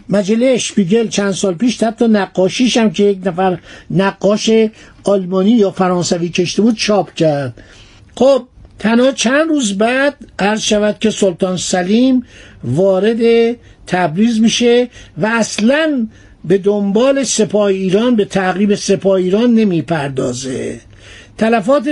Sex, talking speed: male, 120 wpm